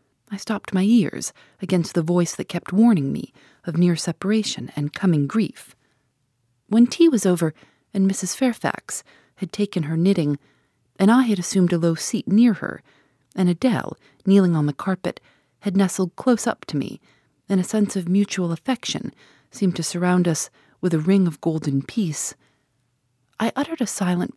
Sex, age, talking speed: female, 40-59, 170 wpm